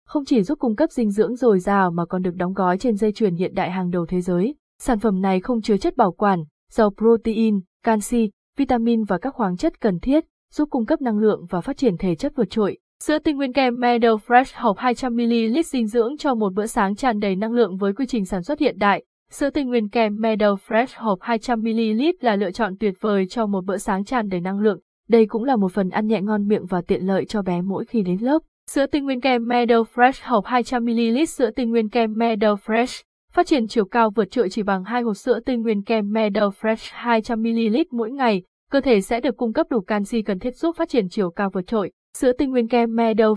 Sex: female